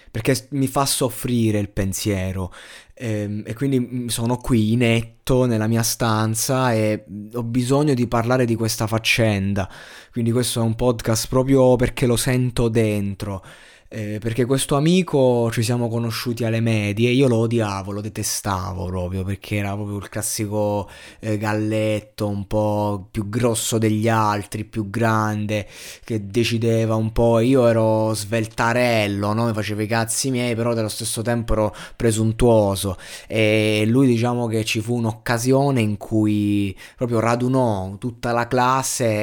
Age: 20-39